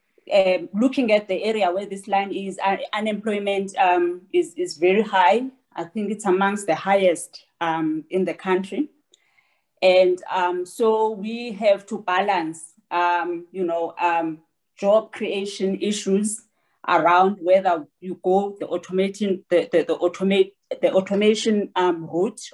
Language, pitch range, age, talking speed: English, 180-210 Hz, 30-49, 135 wpm